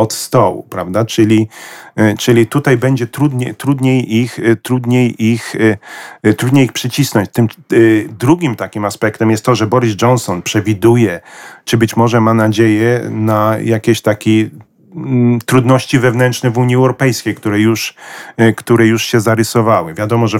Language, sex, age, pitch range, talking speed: Polish, male, 40-59, 110-125 Hz, 135 wpm